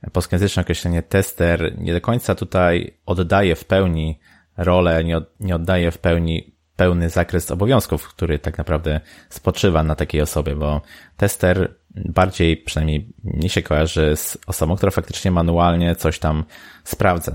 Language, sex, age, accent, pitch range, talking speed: Polish, male, 20-39, native, 75-95 Hz, 140 wpm